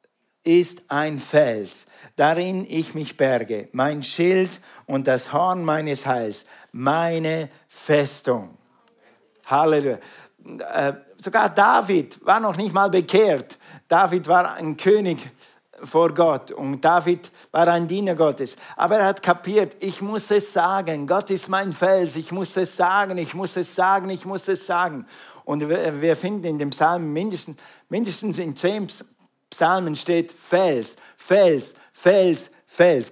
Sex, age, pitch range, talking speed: male, 50-69, 155-190 Hz, 140 wpm